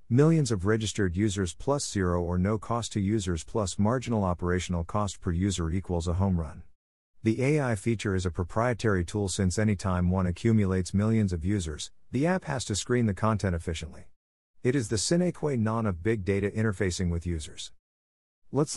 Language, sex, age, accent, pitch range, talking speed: English, male, 50-69, American, 90-115 Hz, 180 wpm